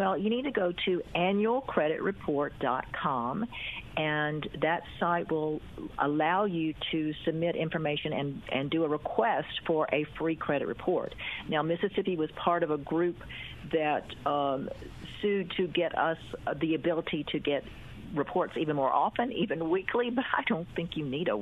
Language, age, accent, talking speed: English, 50-69, American, 155 wpm